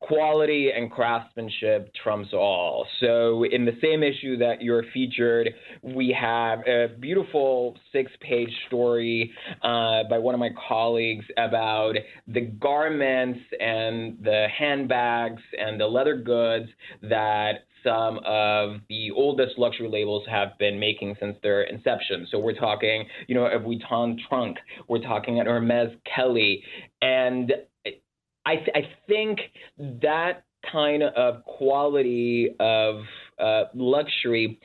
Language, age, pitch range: English, 20-39, 115-140 Hz